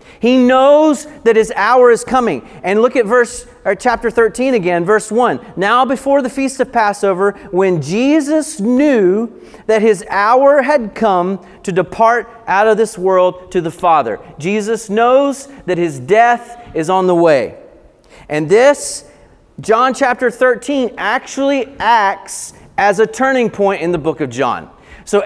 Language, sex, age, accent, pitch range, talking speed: English, male, 40-59, American, 180-245 Hz, 155 wpm